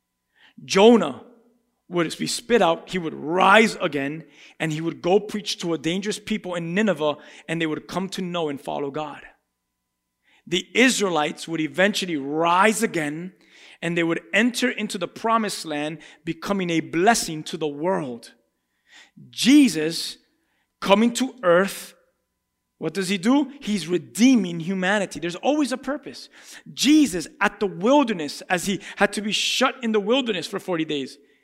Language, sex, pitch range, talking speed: English, male, 170-240 Hz, 155 wpm